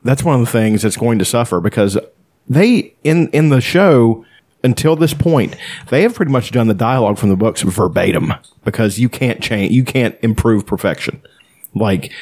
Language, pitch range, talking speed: English, 100-125 Hz, 185 wpm